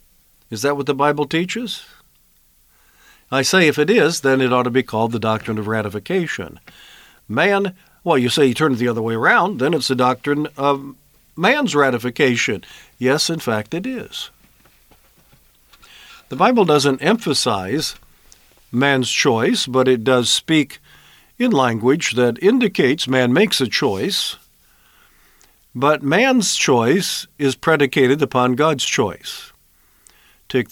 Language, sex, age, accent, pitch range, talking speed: English, male, 50-69, American, 115-145 Hz, 140 wpm